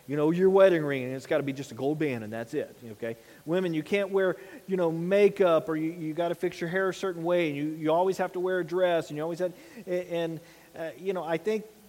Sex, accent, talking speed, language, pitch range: male, American, 285 wpm, English, 150-195 Hz